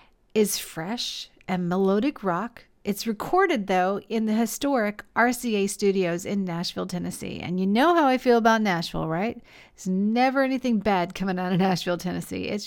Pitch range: 195-245 Hz